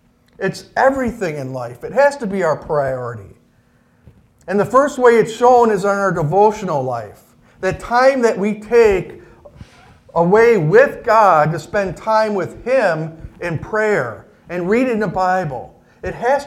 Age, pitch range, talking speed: 50-69, 160-220 Hz, 155 wpm